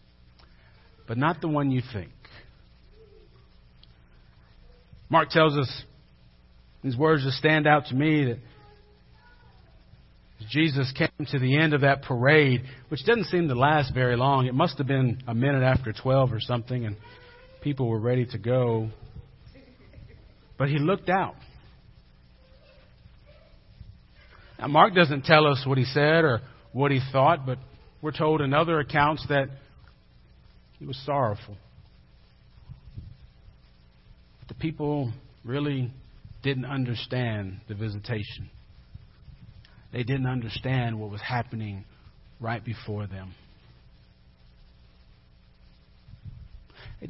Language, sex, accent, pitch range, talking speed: English, male, American, 95-140 Hz, 115 wpm